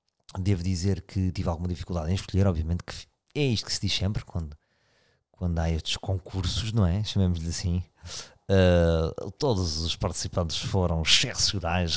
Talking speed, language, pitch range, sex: 150 wpm, Portuguese, 90-110 Hz, male